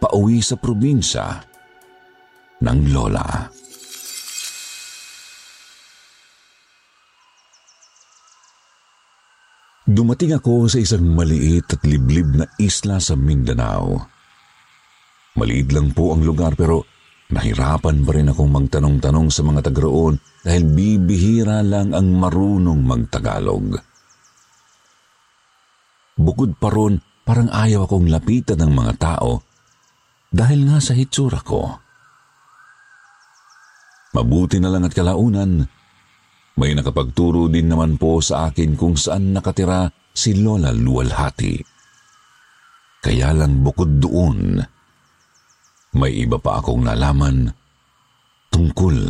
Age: 50-69